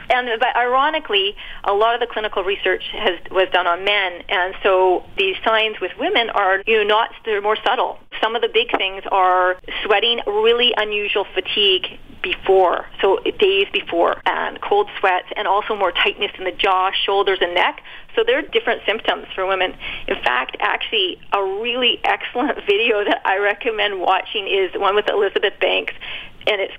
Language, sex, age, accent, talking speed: English, female, 30-49, American, 180 wpm